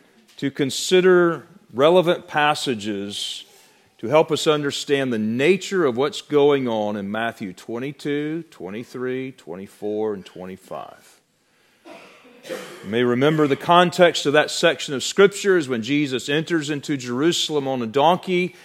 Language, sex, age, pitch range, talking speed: English, male, 40-59, 120-170 Hz, 130 wpm